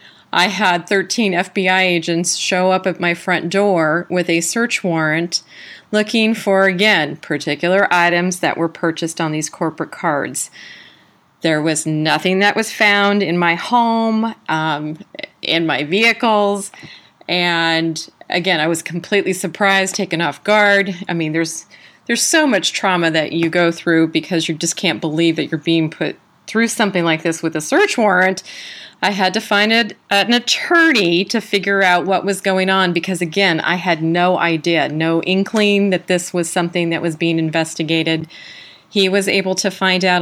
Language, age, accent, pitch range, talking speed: English, 30-49, American, 165-200 Hz, 165 wpm